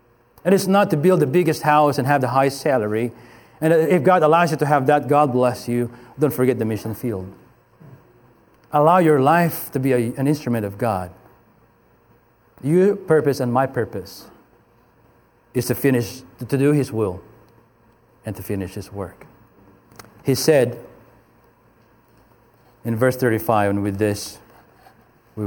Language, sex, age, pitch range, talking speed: English, male, 40-59, 115-155 Hz, 150 wpm